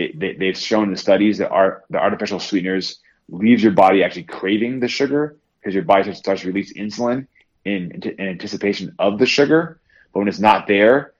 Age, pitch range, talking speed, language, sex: 20-39, 90-105 Hz, 180 wpm, English, male